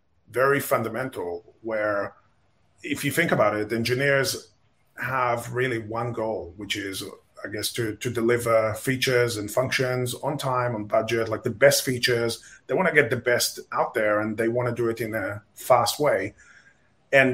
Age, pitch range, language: 30-49, 110-130 Hz, English